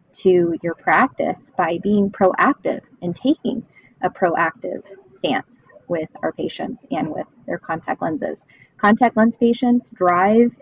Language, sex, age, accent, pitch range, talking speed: English, female, 20-39, American, 175-210 Hz, 130 wpm